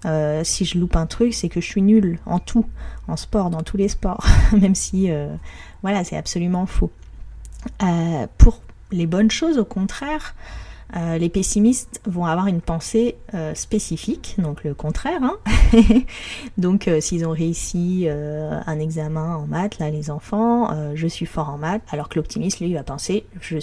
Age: 30-49